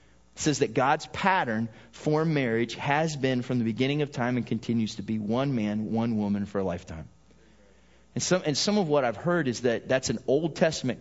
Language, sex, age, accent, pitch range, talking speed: English, male, 30-49, American, 105-130 Hz, 215 wpm